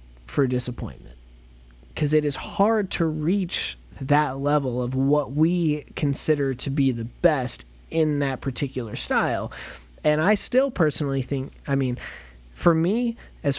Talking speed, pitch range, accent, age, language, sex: 140 wpm, 120-160 Hz, American, 20-39, English, male